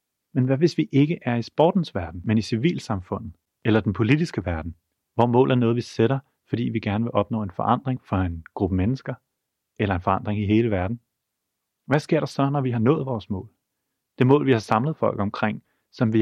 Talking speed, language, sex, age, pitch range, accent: 215 wpm, Danish, male, 30-49, 105-130 Hz, native